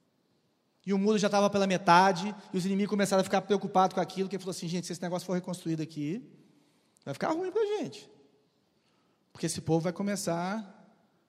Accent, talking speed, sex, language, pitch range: Brazilian, 195 wpm, male, Portuguese, 160-200 Hz